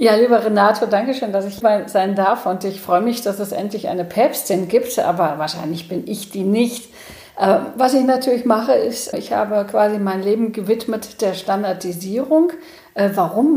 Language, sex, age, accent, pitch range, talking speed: German, female, 40-59, German, 190-235 Hz, 175 wpm